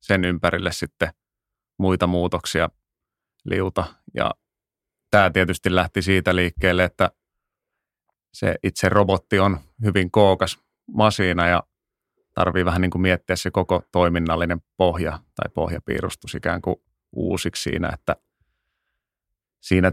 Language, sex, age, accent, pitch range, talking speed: Finnish, male, 30-49, native, 80-95 Hz, 110 wpm